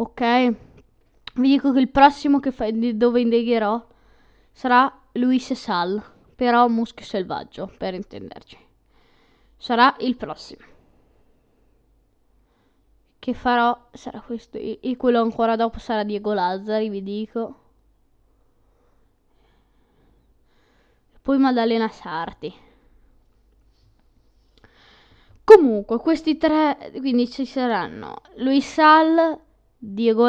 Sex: female